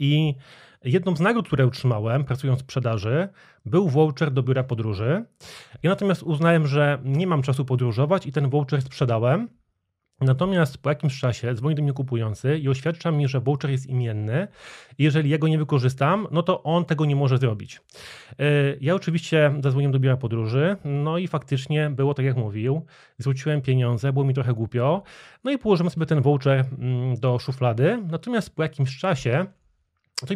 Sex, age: male, 30-49